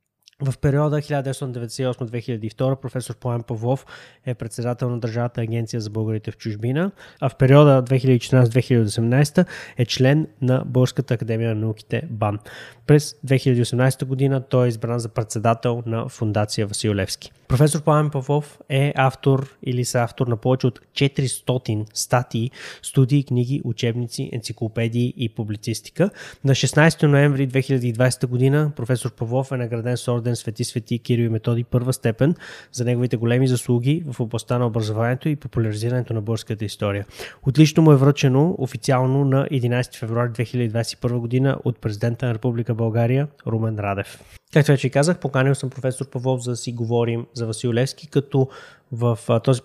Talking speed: 145 wpm